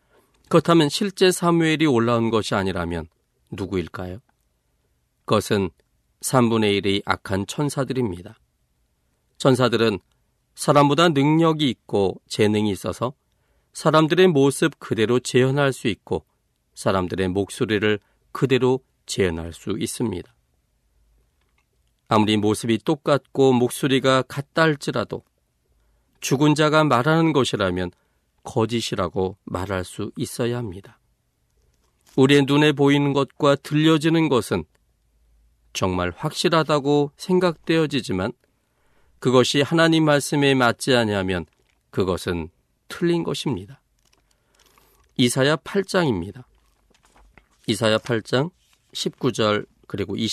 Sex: male